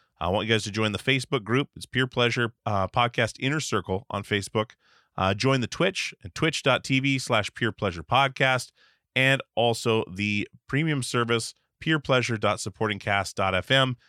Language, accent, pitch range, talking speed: English, American, 95-120 Hz, 145 wpm